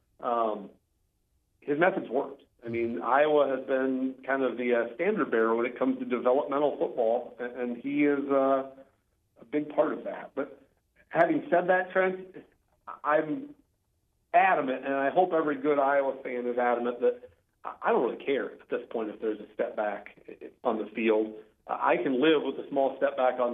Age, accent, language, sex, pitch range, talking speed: 50-69, American, English, male, 115-170 Hz, 185 wpm